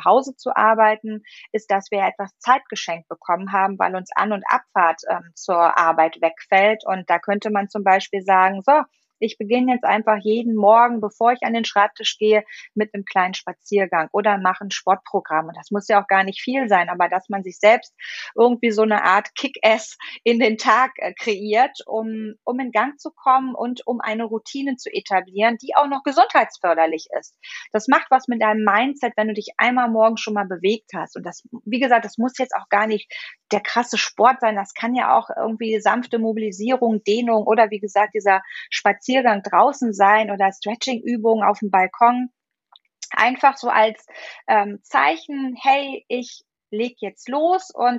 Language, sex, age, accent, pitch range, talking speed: German, female, 30-49, German, 200-240 Hz, 185 wpm